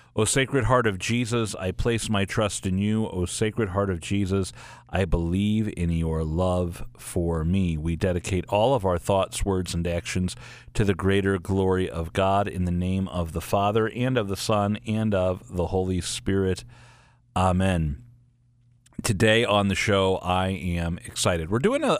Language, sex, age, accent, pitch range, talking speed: English, male, 40-59, American, 95-120 Hz, 175 wpm